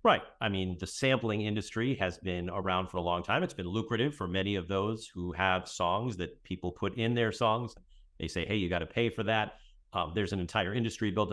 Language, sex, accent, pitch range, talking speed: English, male, American, 90-120 Hz, 235 wpm